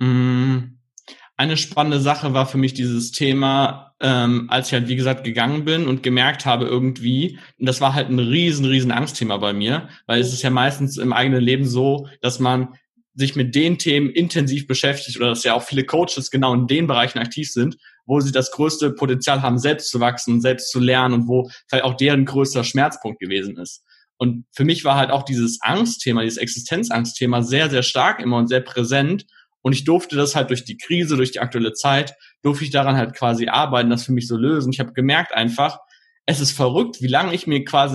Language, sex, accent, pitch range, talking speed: German, male, German, 125-150 Hz, 210 wpm